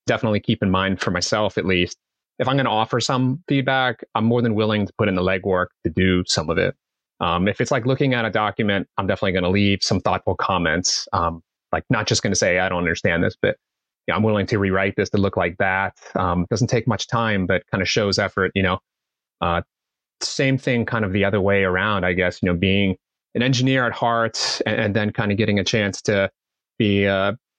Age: 30-49